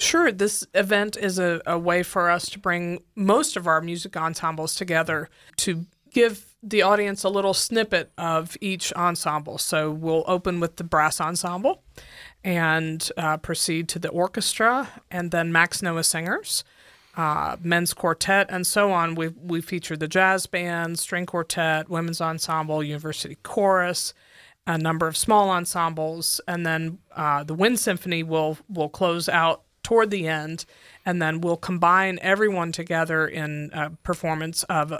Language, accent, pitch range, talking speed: English, American, 160-185 Hz, 155 wpm